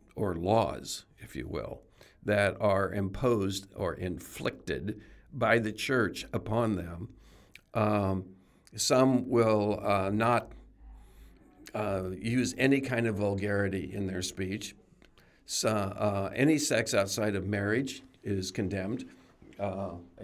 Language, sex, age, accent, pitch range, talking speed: English, male, 60-79, American, 95-120 Hz, 115 wpm